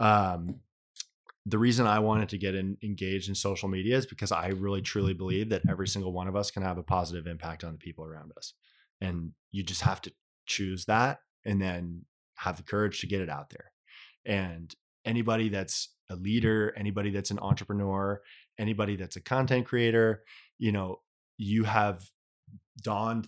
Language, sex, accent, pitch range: English, male, American, 95-110 Hz